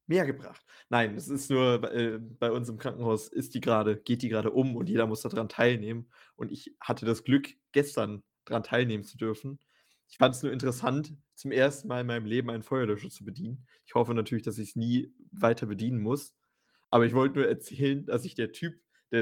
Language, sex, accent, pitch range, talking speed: German, male, German, 110-130 Hz, 205 wpm